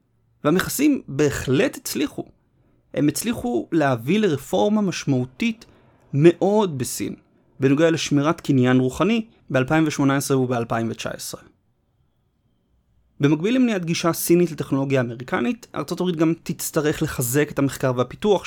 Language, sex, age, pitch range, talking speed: Hebrew, male, 30-49, 130-180 Hz, 95 wpm